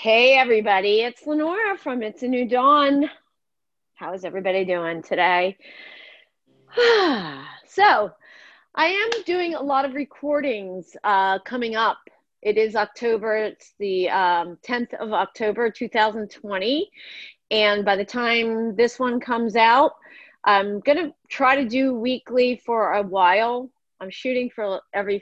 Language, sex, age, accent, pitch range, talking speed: English, female, 30-49, American, 205-270 Hz, 135 wpm